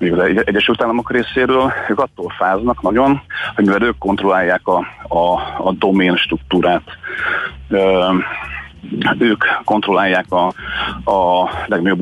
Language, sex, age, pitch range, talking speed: Hungarian, male, 40-59, 95-115 Hz, 115 wpm